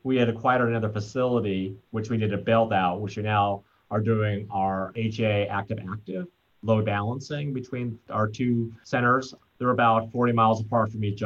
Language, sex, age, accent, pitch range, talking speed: English, male, 30-49, American, 105-120 Hz, 170 wpm